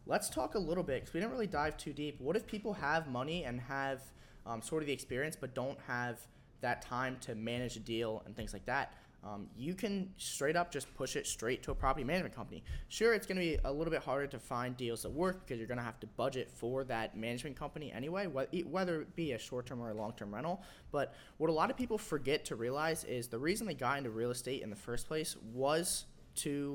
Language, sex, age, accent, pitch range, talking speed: English, male, 20-39, American, 120-155 Hz, 240 wpm